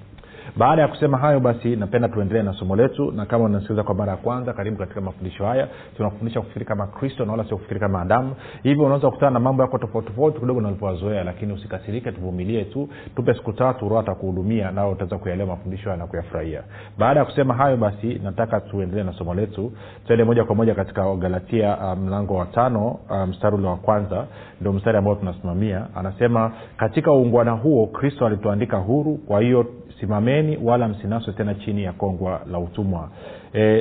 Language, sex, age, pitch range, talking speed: Swahili, male, 40-59, 100-125 Hz, 175 wpm